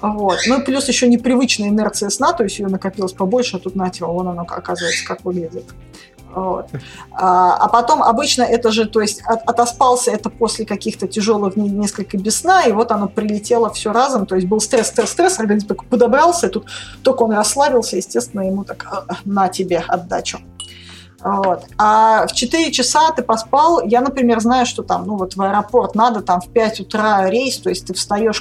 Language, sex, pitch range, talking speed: Russian, female, 190-240 Hz, 185 wpm